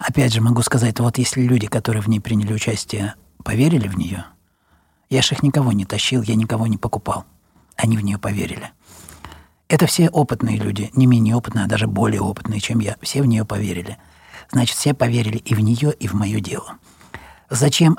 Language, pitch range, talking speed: Russian, 115-170 Hz, 190 wpm